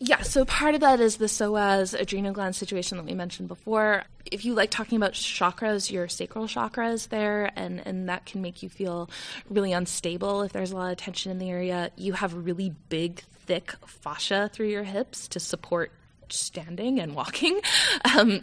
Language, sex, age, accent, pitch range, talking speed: English, female, 20-39, American, 185-235 Hz, 190 wpm